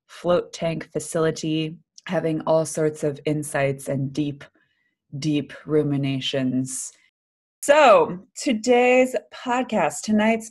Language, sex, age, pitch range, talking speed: English, female, 20-39, 145-170 Hz, 90 wpm